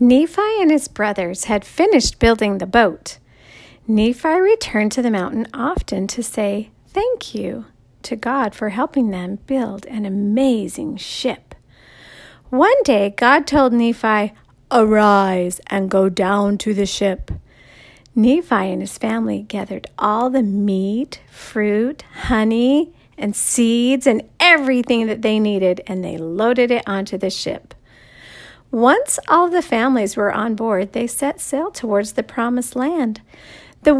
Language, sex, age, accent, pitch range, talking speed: English, female, 40-59, American, 200-265 Hz, 140 wpm